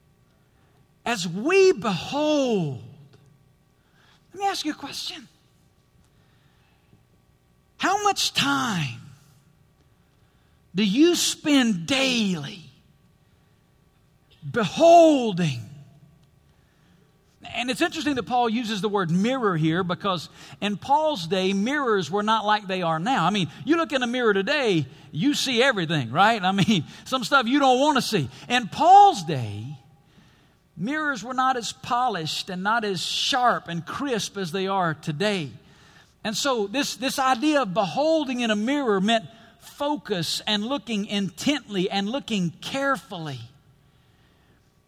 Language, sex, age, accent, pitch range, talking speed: English, male, 50-69, American, 160-265 Hz, 125 wpm